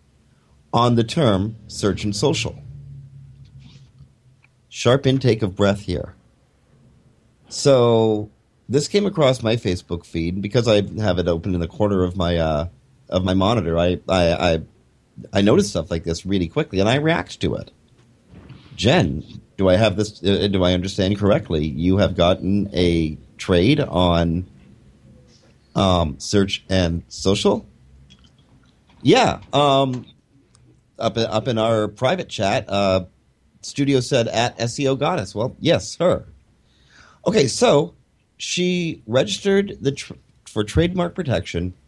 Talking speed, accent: 130 wpm, American